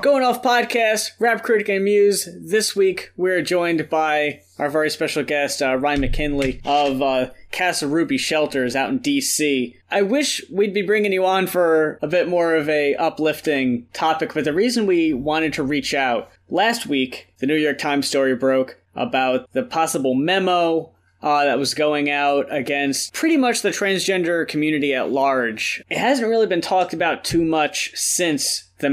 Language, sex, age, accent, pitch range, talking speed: English, male, 20-39, American, 135-180 Hz, 175 wpm